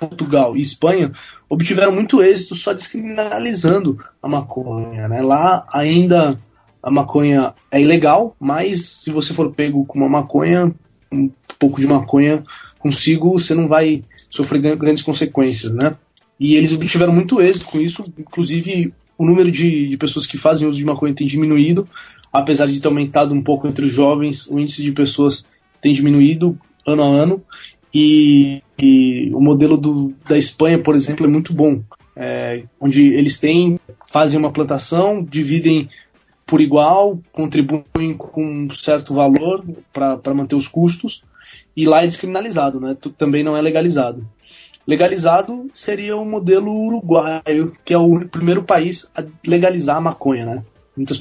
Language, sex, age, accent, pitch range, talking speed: Portuguese, male, 20-39, Brazilian, 140-165 Hz, 155 wpm